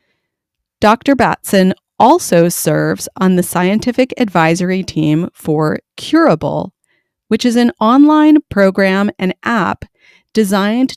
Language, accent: English, American